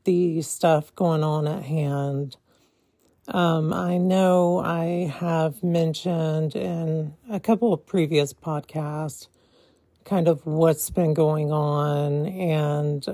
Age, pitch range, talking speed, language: 40-59, 150-175 Hz, 115 wpm, English